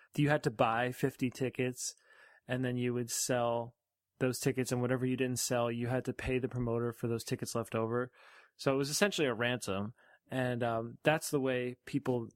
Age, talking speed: 20-39, 200 wpm